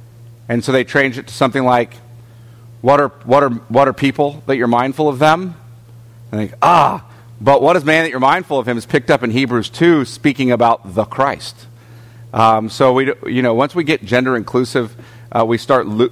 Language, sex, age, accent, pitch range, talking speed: English, male, 40-59, American, 115-165 Hz, 210 wpm